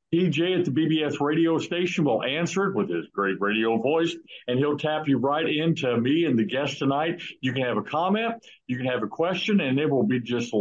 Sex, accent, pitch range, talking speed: male, American, 115-145 Hz, 225 wpm